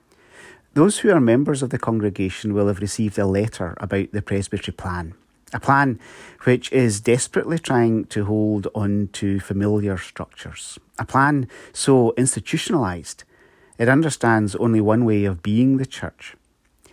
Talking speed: 145 wpm